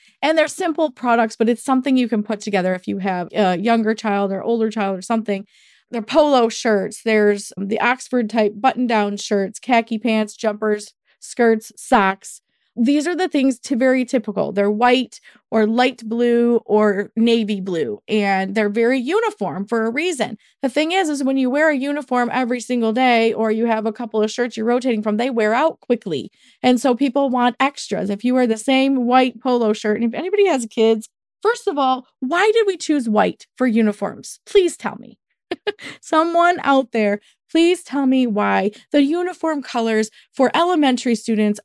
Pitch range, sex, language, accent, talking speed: 220-295 Hz, female, English, American, 185 wpm